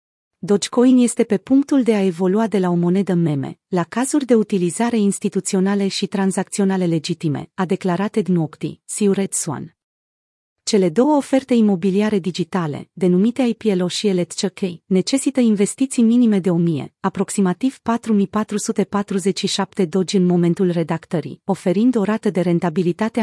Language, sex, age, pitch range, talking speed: Romanian, female, 40-59, 180-220 Hz, 125 wpm